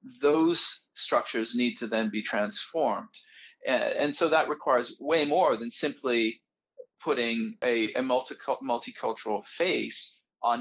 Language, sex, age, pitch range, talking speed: English, male, 40-59, 145-240 Hz, 125 wpm